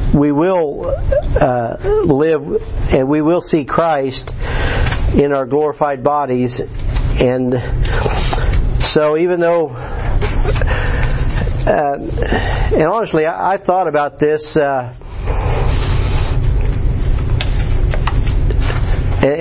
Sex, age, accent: male, 50-69, American